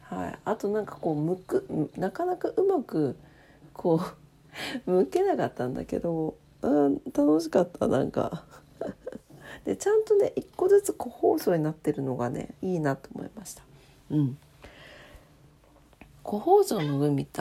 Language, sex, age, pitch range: Japanese, female, 40-59, 145-210 Hz